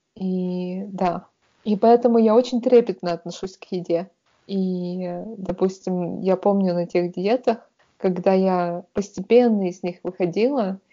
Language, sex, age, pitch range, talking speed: Russian, female, 20-39, 175-210 Hz, 125 wpm